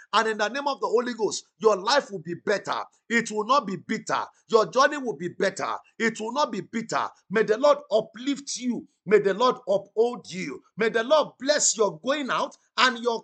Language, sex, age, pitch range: English, male, 50-69, 210-275 Hz